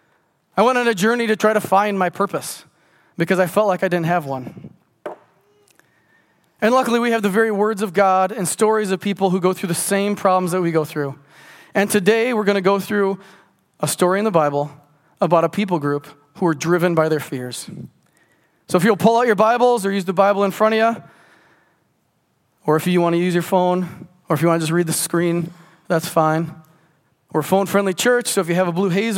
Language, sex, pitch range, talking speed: English, male, 175-220 Hz, 230 wpm